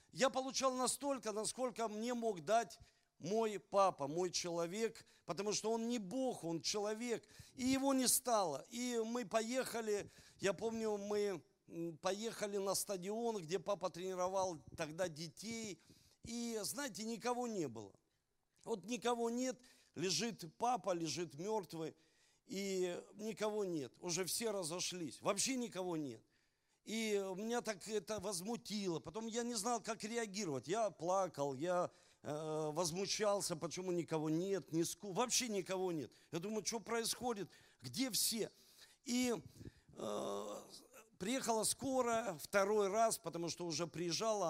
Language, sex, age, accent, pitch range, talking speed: Russian, male, 50-69, native, 170-230 Hz, 130 wpm